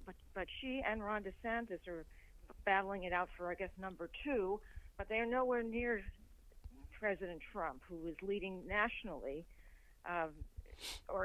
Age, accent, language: 40-59, American, English